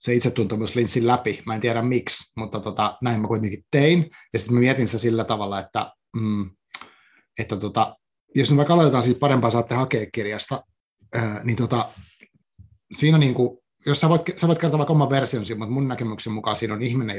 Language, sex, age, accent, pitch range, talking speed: Finnish, male, 30-49, native, 110-125 Hz, 200 wpm